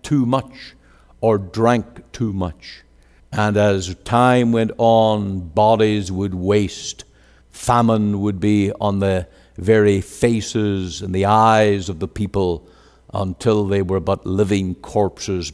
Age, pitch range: 60-79, 95-135 Hz